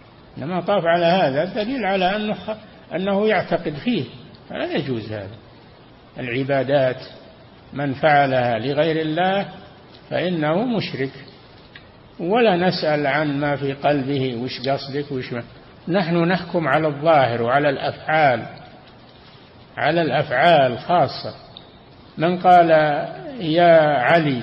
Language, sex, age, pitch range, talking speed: Arabic, male, 60-79, 135-185 Hz, 105 wpm